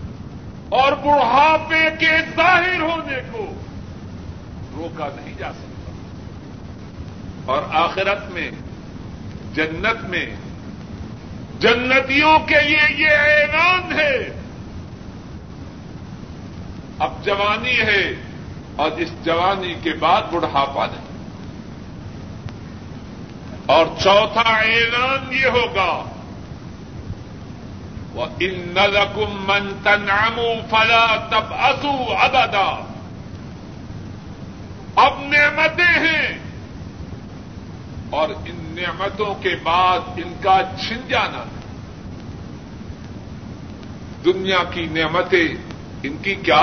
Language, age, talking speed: Urdu, 50-69, 75 wpm